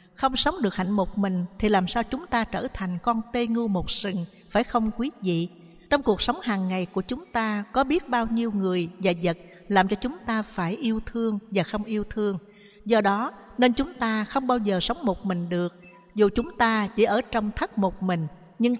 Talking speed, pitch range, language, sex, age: 225 wpm, 180-230 Hz, Vietnamese, female, 60-79